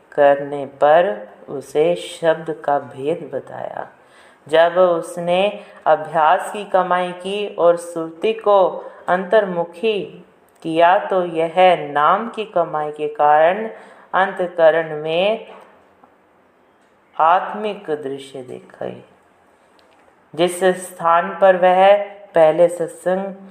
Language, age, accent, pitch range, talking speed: Hindi, 50-69, native, 155-190 Hz, 90 wpm